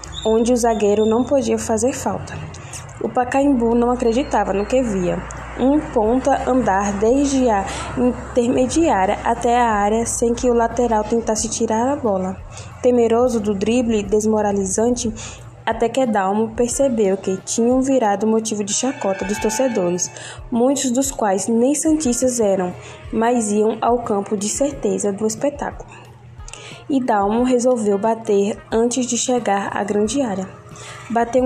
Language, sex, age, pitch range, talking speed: Portuguese, female, 10-29, 205-250 Hz, 135 wpm